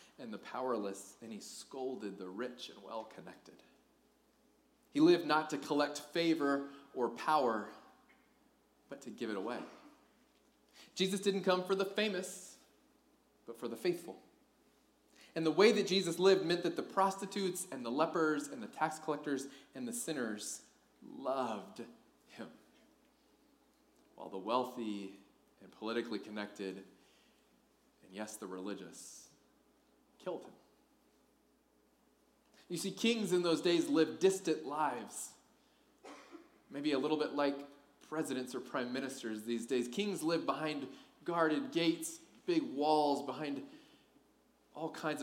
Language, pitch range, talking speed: English, 125-180 Hz, 130 wpm